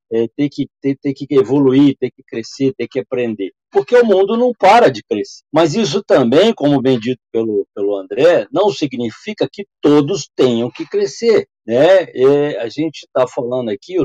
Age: 50-69